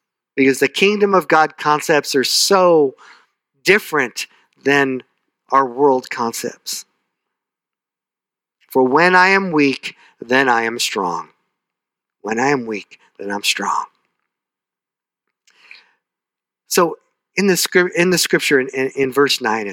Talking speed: 125 wpm